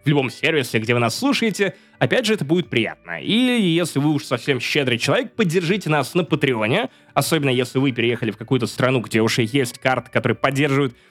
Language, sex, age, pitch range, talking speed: Russian, male, 20-39, 125-175 Hz, 195 wpm